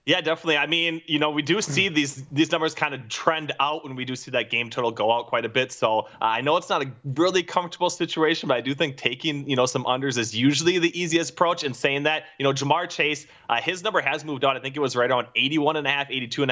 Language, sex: English, male